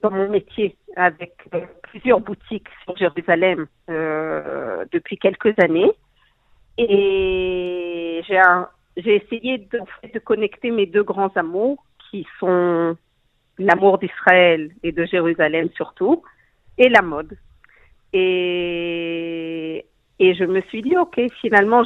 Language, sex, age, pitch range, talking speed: French, female, 50-69, 180-235 Hz, 120 wpm